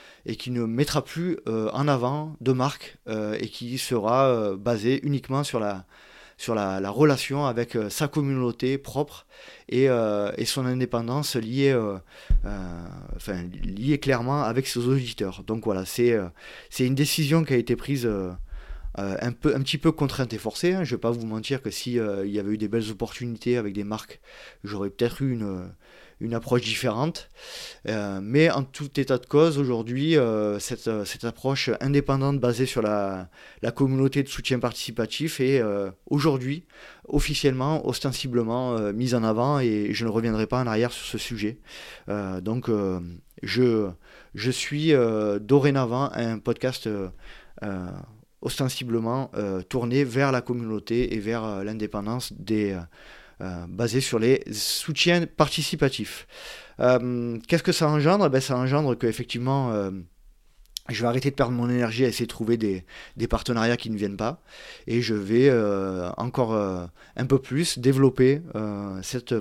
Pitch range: 105-135 Hz